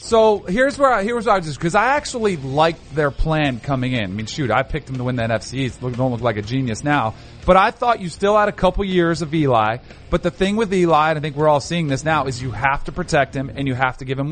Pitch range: 135-185 Hz